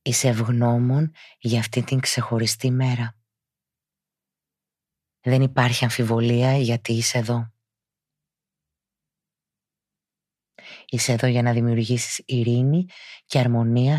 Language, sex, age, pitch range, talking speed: Greek, female, 20-39, 120-130 Hz, 90 wpm